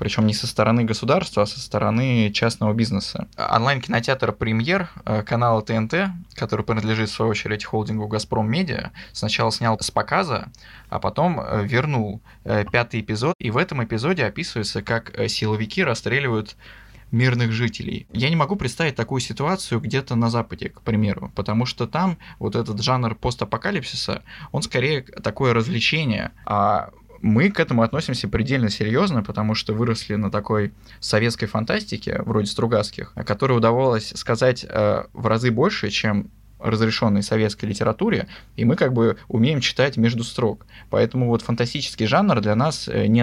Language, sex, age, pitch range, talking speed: Russian, male, 20-39, 110-120 Hz, 145 wpm